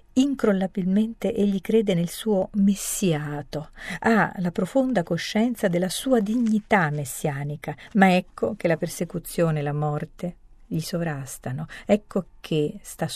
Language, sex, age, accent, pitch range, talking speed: Italian, female, 50-69, native, 150-190 Hz, 125 wpm